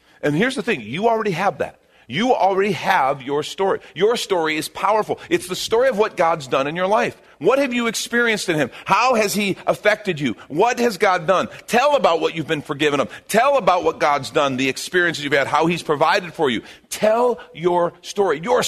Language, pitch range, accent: English, 145-220 Hz, American